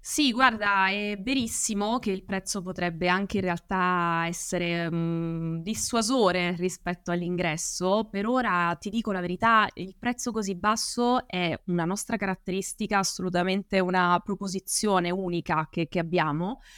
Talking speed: 130 wpm